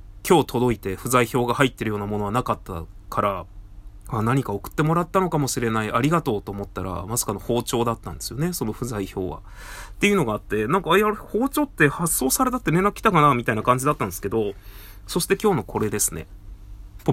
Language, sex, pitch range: Japanese, male, 100-150 Hz